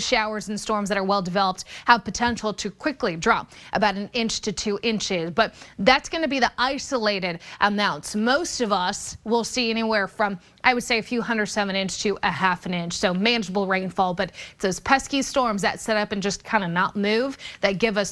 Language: English